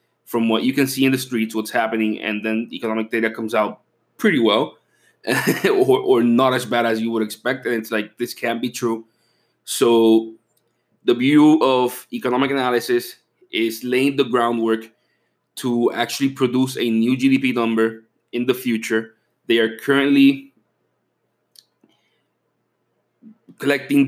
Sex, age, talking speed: male, 20-39, 145 wpm